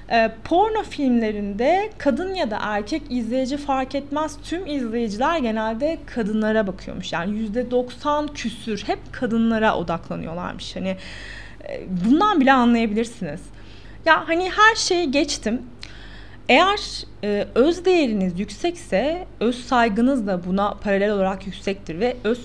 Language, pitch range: Turkish, 205-305 Hz